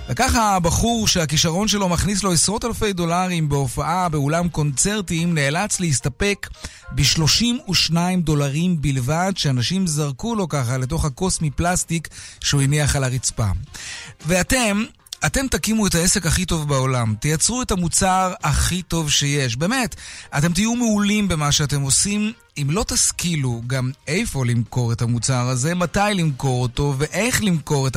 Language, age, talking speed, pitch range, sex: Hebrew, 30-49, 135 wpm, 135-180 Hz, male